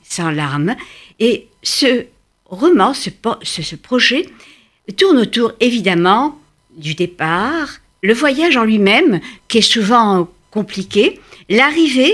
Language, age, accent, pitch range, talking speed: French, 60-79, French, 185-265 Hz, 105 wpm